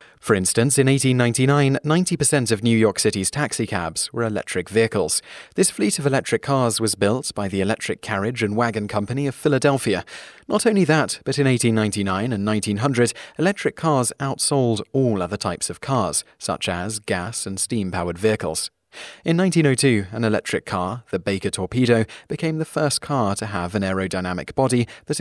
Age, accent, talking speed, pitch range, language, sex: 30-49, British, 165 wpm, 100-135 Hz, English, male